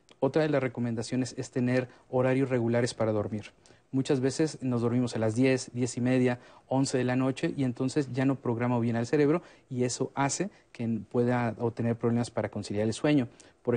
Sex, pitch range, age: male, 120-135 Hz, 50-69